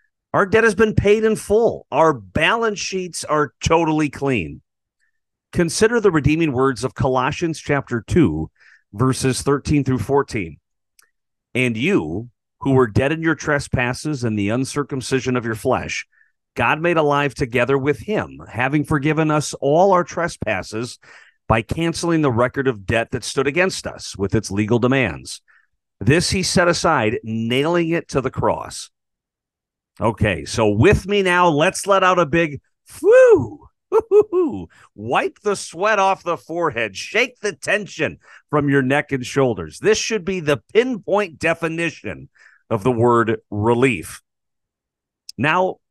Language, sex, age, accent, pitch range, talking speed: English, male, 40-59, American, 120-175 Hz, 145 wpm